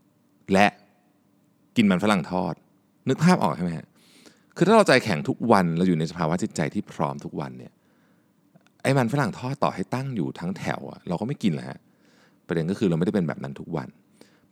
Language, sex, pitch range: Thai, male, 80-125 Hz